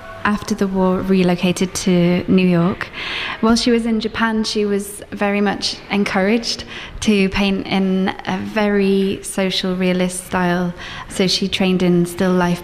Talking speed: 145 wpm